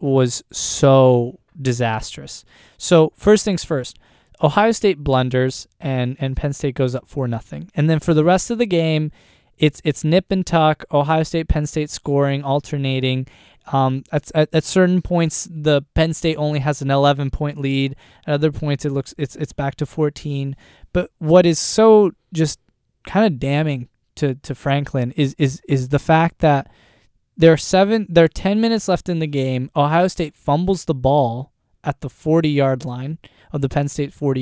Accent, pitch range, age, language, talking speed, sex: American, 135-165 Hz, 20-39, English, 185 wpm, male